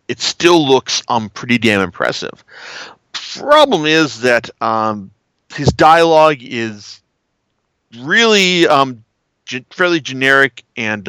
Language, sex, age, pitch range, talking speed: English, male, 40-59, 115-150 Hz, 110 wpm